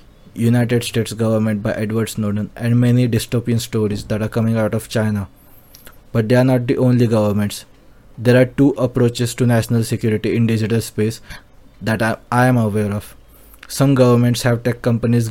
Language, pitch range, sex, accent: English, 115-125 Hz, male, Indian